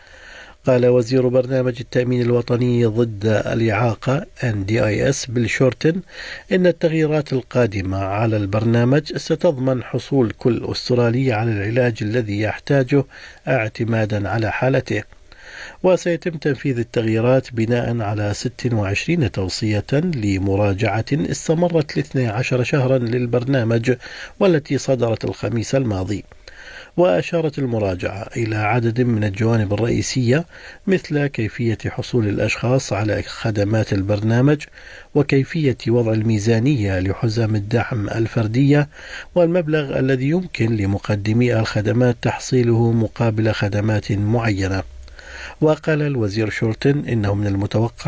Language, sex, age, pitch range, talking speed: Arabic, male, 50-69, 105-130 Hz, 95 wpm